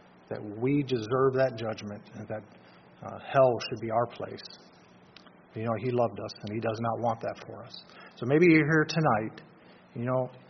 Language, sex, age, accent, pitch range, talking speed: English, male, 40-59, American, 110-145 Hz, 190 wpm